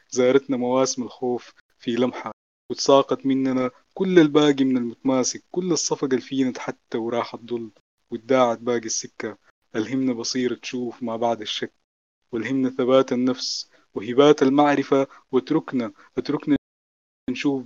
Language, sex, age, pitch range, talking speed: Arabic, male, 20-39, 120-140 Hz, 115 wpm